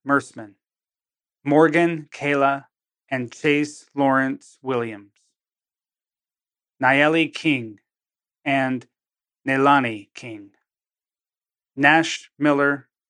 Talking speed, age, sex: 65 wpm, 30-49, male